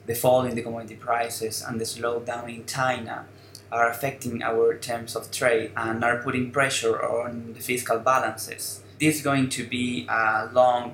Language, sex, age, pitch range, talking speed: English, male, 20-39, 115-135 Hz, 175 wpm